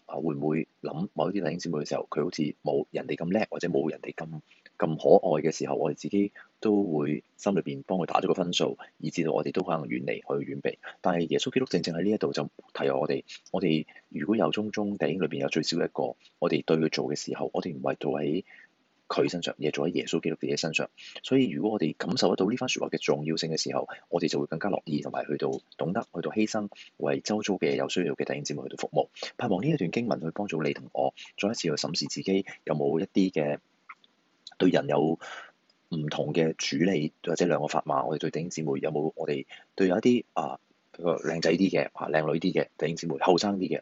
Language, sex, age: Chinese, male, 30-49